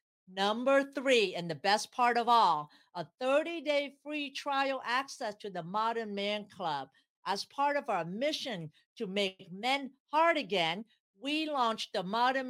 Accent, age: American, 50-69